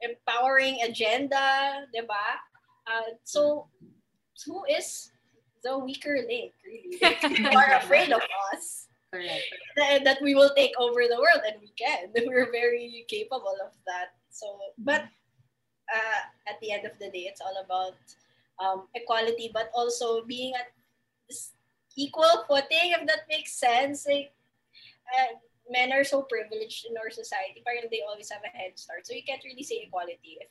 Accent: Filipino